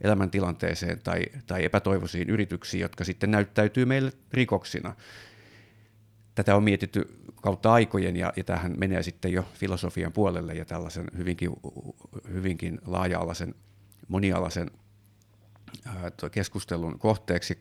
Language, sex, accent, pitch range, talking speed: Finnish, male, native, 90-110 Hz, 105 wpm